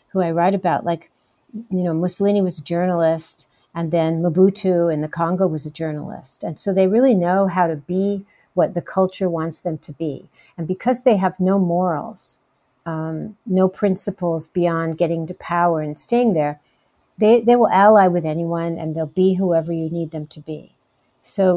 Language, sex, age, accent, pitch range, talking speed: English, female, 50-69, American, 160-190 Hz, 185 wpm